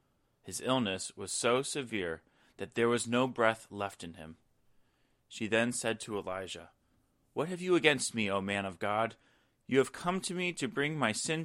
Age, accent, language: 30-49, American, English